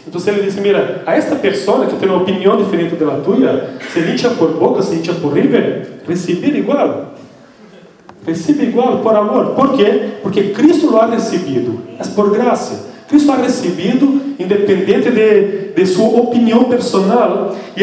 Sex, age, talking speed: male, 40-59, 170 wpm